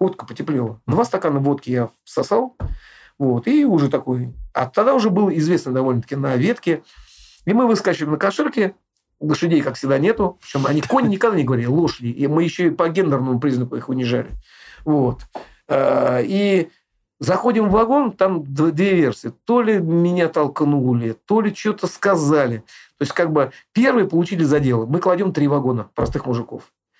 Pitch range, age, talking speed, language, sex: 130-190 Hz, 50-69, 165 wpm, Russian, male